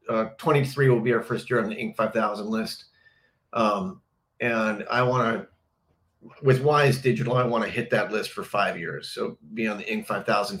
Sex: male